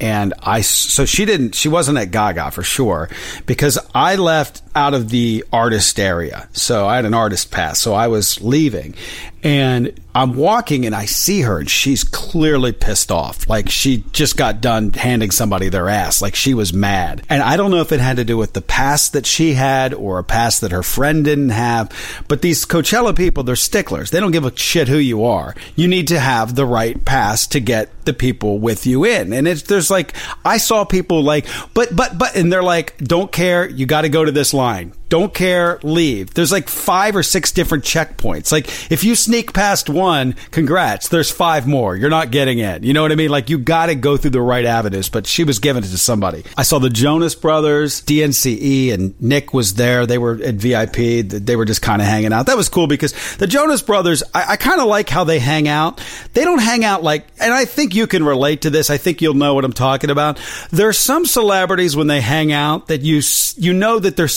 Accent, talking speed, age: American, 225 wpm, 40-59